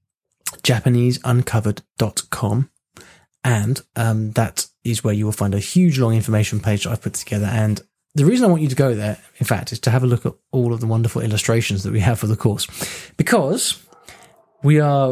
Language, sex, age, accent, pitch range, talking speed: English, male, 20-39, British, 105-135 Hz, 195 wpm